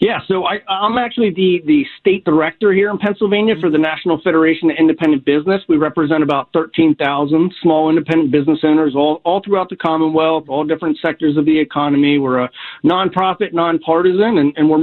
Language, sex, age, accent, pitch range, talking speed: English, male, 40-59, American, 145-185 Hz, 180 wpm